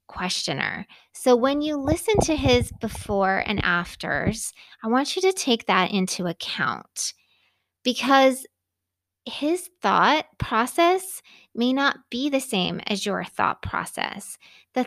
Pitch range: 195-265 Hz